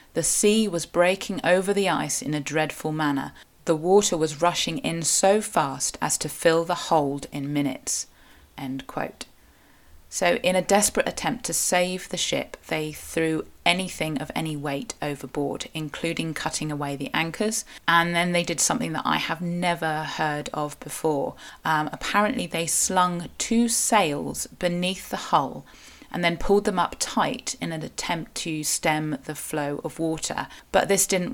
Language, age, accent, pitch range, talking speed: English, 30-49, British, 150-175 Hz, 165 wpm